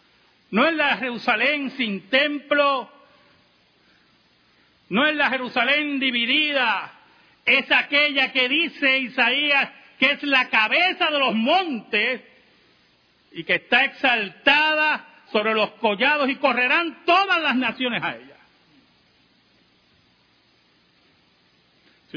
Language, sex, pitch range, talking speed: Spanish, male, 160-260 Hz, 105 wpm